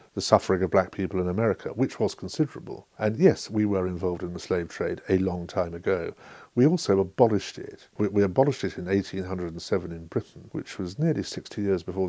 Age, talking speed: 50-69, 205 wpm